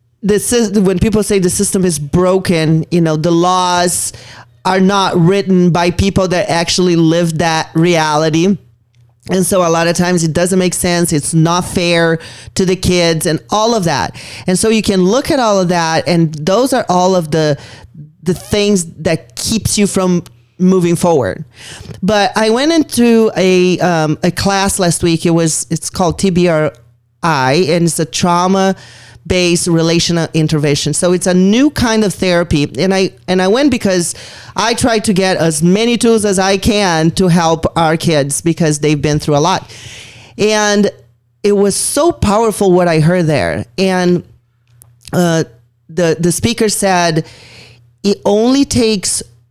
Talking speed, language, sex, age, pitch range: 170 wpm, English, male, 30-49, 155-195 Hz